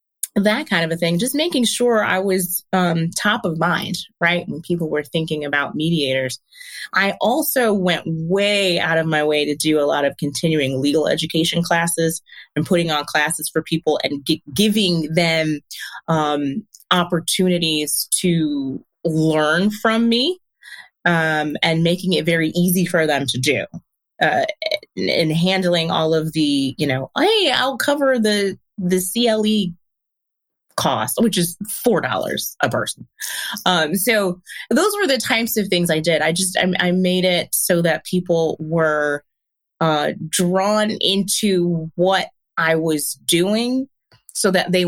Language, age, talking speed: English, 30-49, 155 wpm